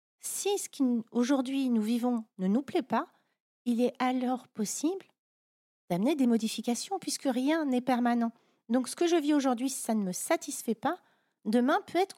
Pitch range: 220-285 Hz